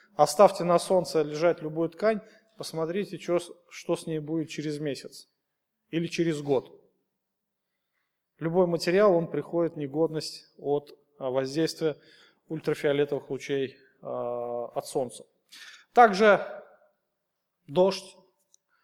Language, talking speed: Russian, 100 wpm